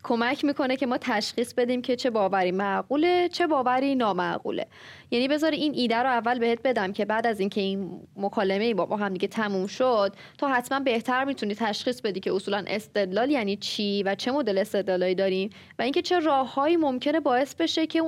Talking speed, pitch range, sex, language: 190 wpm, 215-305 Hz, female, Persian